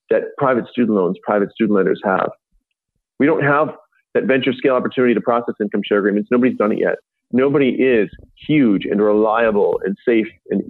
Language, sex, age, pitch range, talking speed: English, male, 40-59, 105-140 Hz, 180 wpm